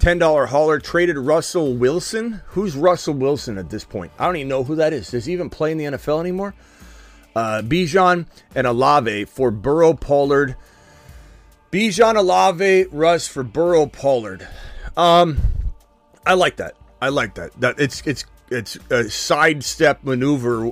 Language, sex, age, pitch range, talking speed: English, male, 30-49, 115-160 Hz, 155 wpm